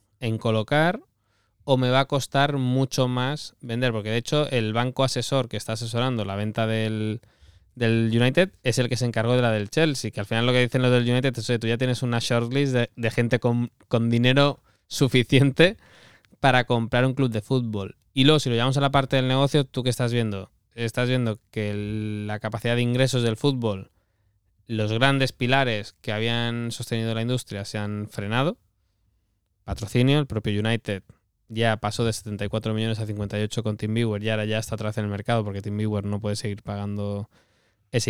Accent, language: Spanish, Spanish